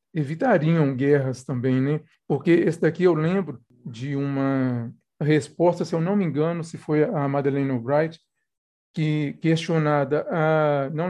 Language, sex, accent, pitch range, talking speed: Portuguese, male, Brazilian, 140-170 Hz, 140 wpm